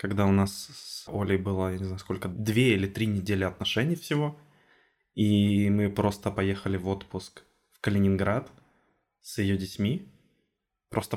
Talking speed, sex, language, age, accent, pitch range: 145 wpm, male, Russian, 20-39, native, 95-115 Hz